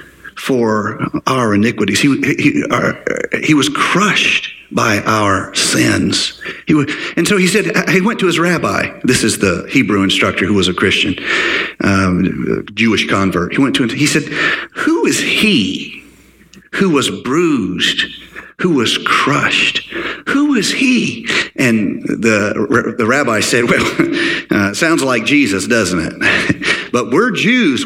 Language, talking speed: English, 145 wpm